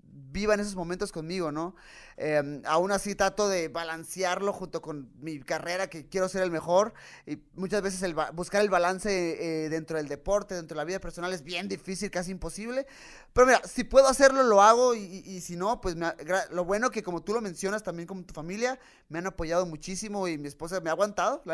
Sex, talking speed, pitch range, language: male, 215 wpm, 170-210 Hz, Spanish